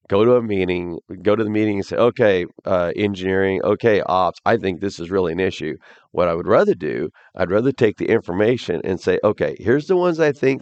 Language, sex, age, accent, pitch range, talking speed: English, male, 40-59, American, 95-135 Hz, 225 wpm